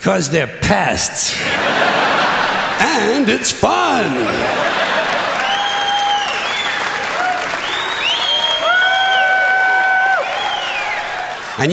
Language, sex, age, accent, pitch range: English, male, 60-79, American, 170-240 Hz